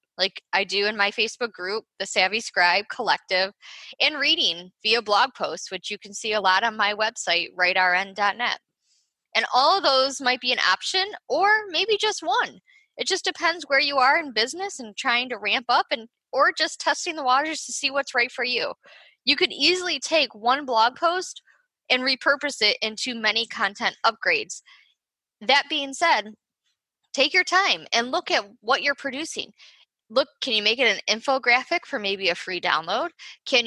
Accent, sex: American, female